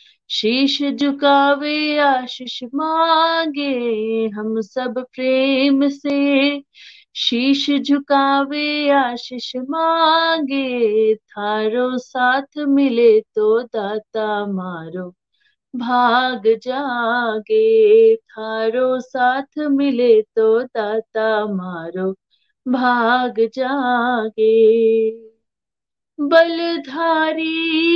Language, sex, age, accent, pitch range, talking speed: Hindi, female, 20-39, native, 245-320 Hz, 60 wpm